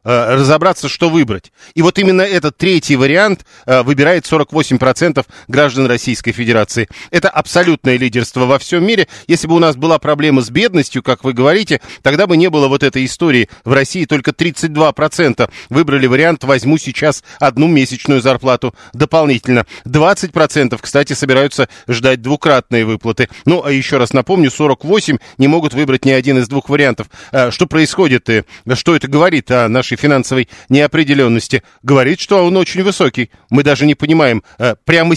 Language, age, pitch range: Russian, 40-59, 130-160 Hz